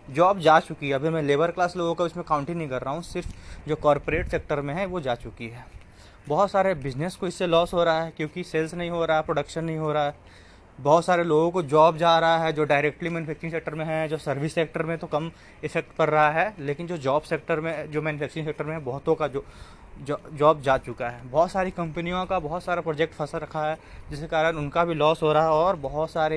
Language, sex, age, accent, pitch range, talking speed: Hindi, male, 20-39, native, 145-170 Hz, 245 wpm